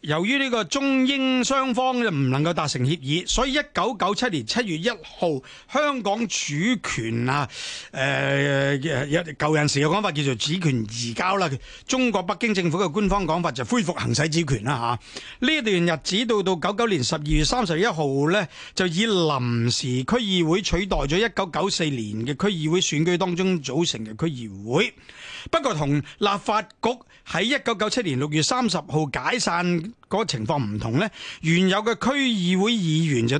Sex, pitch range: male, 140-215 Hz